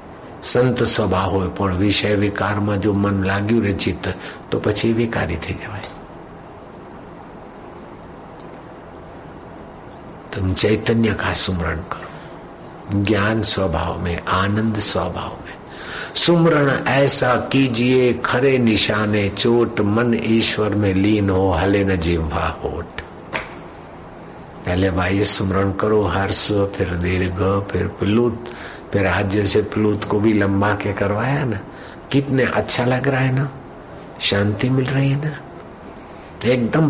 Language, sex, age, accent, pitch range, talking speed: Hindi, male, 60-79, native, 95-120 Hz, 110 wpm